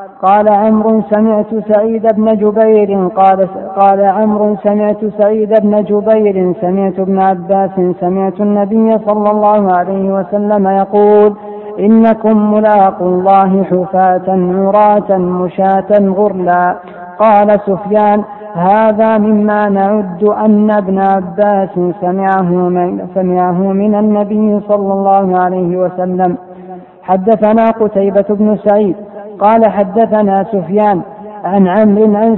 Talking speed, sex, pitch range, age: 105 wpm, female, 195-215 Hz, 20-39